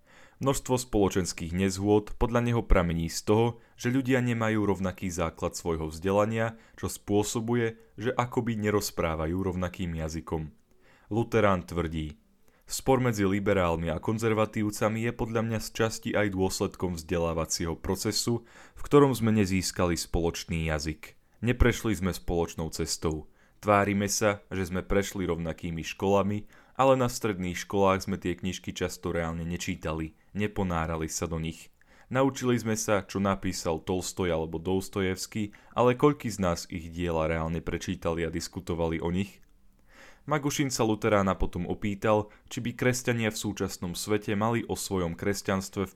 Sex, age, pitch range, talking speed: male, 30-49, 85-110 Hz, 135 wpm